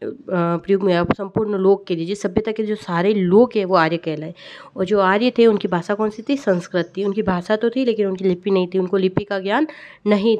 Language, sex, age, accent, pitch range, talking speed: Hindi, female, 20-39, native, 190-225 Hz, 235 wpm